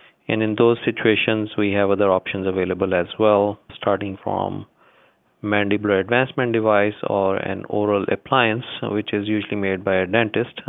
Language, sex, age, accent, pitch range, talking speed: English, male, 30-49, Indian, 100-115 Hz, 150 wpm